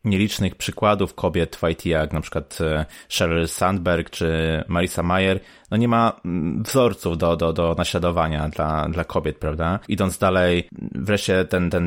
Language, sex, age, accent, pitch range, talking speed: Polish, male, 20-39, native, 90-100 Hz, 150 wpm